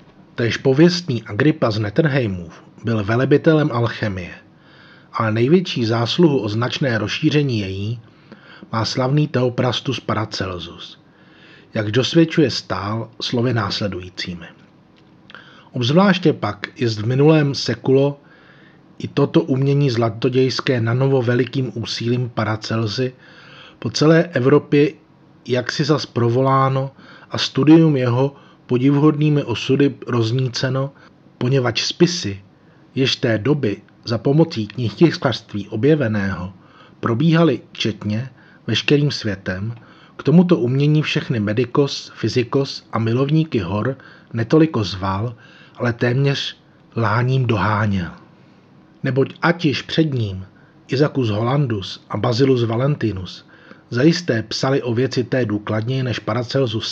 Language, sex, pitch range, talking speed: Czech, male, 110-145 Hz, 105 wpm